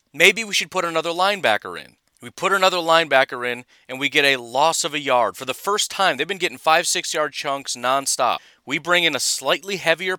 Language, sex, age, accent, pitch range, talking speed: English, male, 30-49, American, 130-170 Hz, 220 wpm